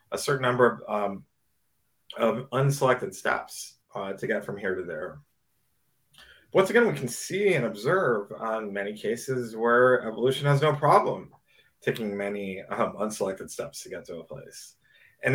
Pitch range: 105-130 Hz